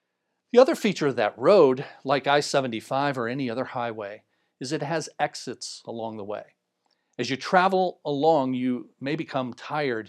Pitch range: 125-165 Hz